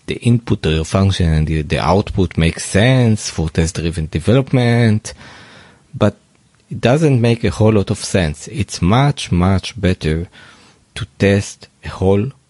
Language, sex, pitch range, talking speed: English, male, 90-125 Hz, 150 wpm